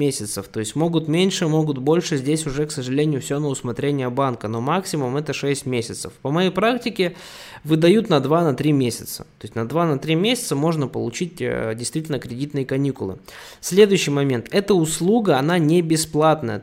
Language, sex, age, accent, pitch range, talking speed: Russian, male, 20-39, native, 135-165 Hz, 160 wpm